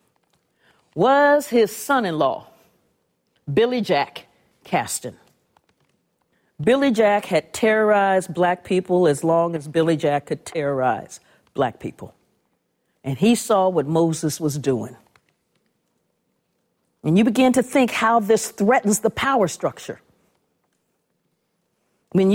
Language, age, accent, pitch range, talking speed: English, 50-69, American, 180-245 Hz, 120 wpm